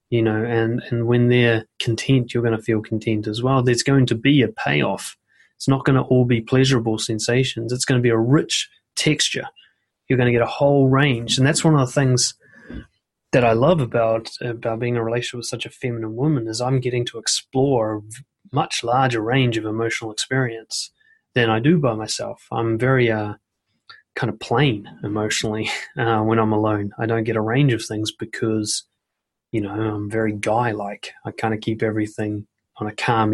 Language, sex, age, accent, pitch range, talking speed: English, male, 20-39, Australian, 110-130 Hz, 200 wpm